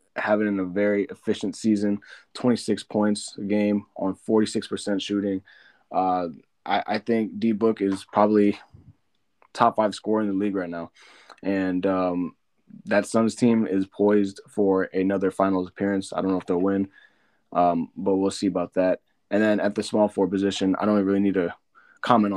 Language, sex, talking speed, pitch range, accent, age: English, male, 170 wpm, 95-105 Hz, American, 20-39